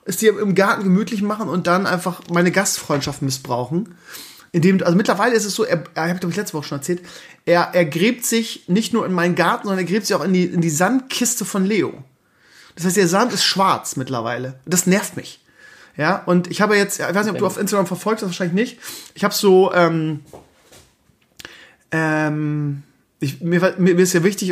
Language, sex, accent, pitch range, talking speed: German, male, German, 165-195 Hz, 210 wpm